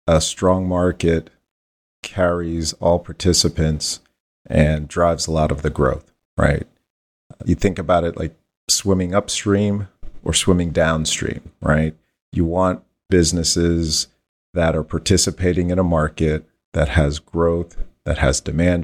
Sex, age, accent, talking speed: male, 40-59, American, 125 wpm